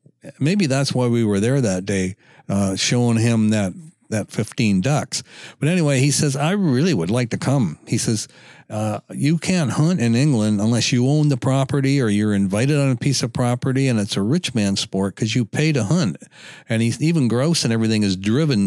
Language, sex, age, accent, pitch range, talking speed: English, male, 60-79, American, 110-145 Hz, 210 wpm